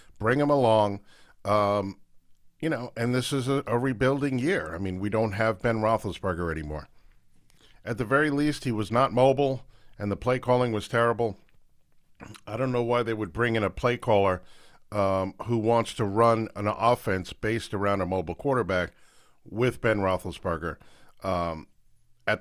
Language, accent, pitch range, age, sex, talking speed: English, American, 100-125 Hz, 50-69, male, 170 wpm